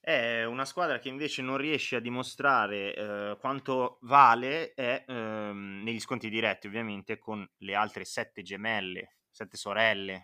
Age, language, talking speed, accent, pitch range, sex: 20-39, Italian, 140 wpm, native, 105-130 Hz, male